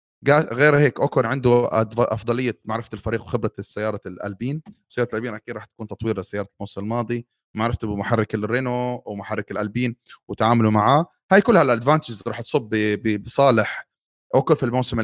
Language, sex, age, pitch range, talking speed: Arabic, male, 30-49, 110-135 Hz, 140 wpm